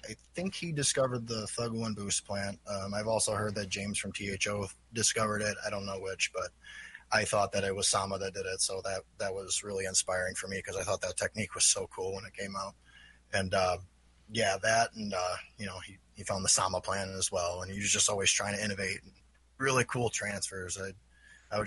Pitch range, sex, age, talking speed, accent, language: 95-110 Hz, male, 20-39, 230 wpm, American, English